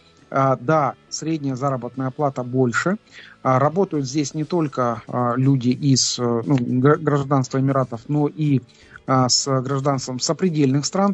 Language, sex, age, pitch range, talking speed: Russian, male, 40-59, 130-160 Hz, 110 wpm